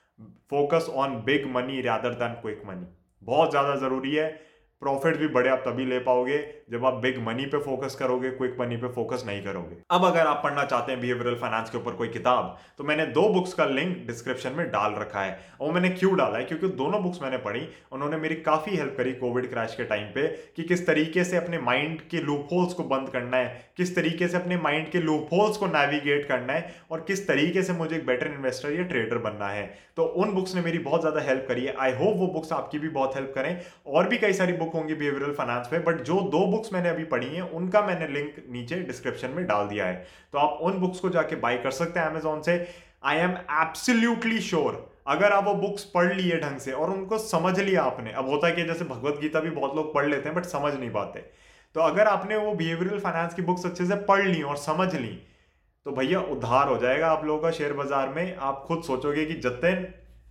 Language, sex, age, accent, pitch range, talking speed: Hindi, male, 20-39, native, 130-175 Hz, 155 wpm